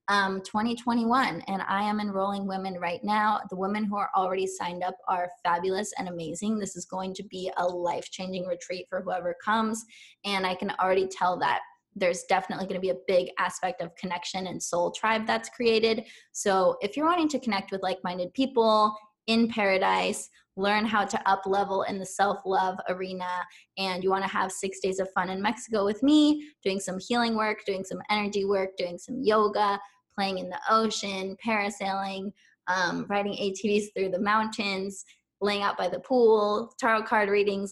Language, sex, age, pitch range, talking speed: English, female, 10-29, 185-220 Hz, 190 wpm